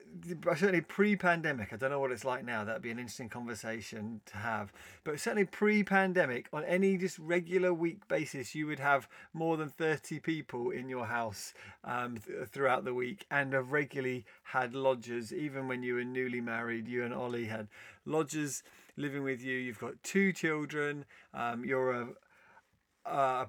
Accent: British